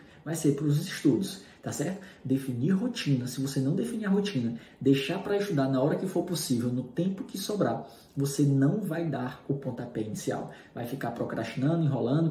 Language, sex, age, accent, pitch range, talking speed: Portuguese, male, 20-39, Brazilian, 120-150 Hz, 185 wpm